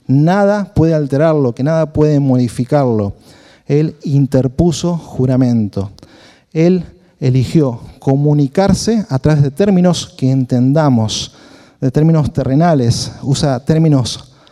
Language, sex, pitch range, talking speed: Spanish, male, 130-165 Hz, 100 wpm